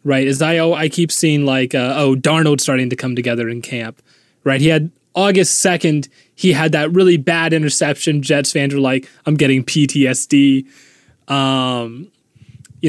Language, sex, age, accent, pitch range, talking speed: English, male, 20-39, American, 135-175 Hz, 170 wpm